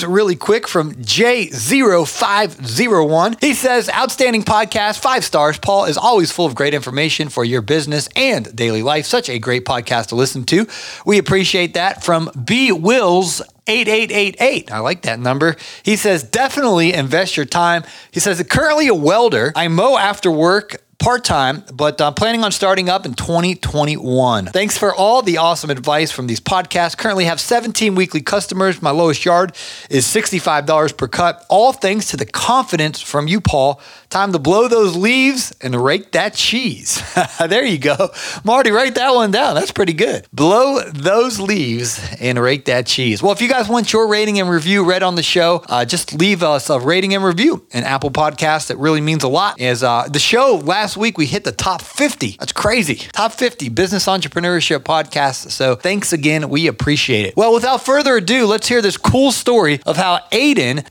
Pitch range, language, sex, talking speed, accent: 145-210 Hz, English, male, 185 wpm, American